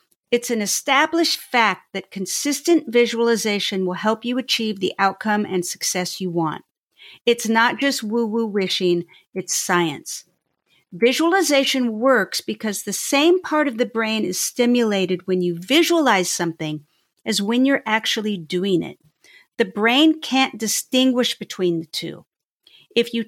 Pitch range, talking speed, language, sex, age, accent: 195-255 Hz, 140 wpm, English, female, 50-69, American